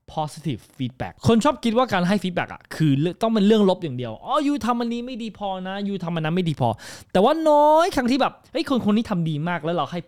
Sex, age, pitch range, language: male, 20-39, 165-240 Hz, Thai